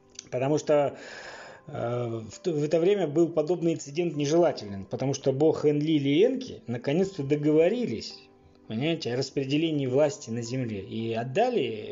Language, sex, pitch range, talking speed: Russian, male, 125-165 Hz, 140 wpm